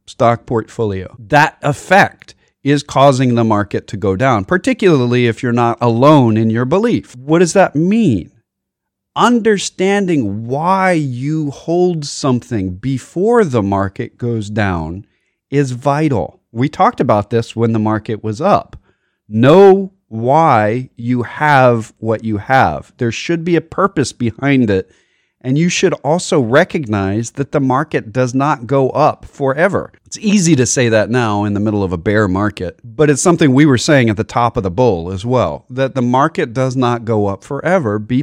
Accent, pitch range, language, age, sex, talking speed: American, 110-145 Hz, English, 40-59, male, 170 wpm